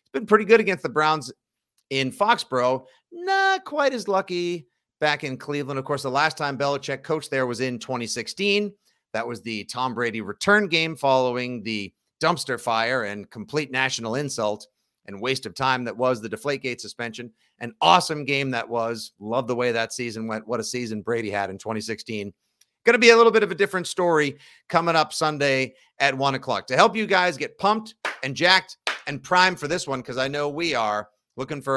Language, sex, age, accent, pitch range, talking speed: English, male, 40-59, American, 120-155 Hz, 200 wpm